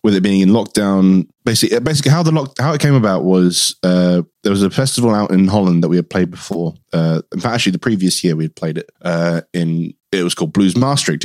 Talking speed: 245 wpm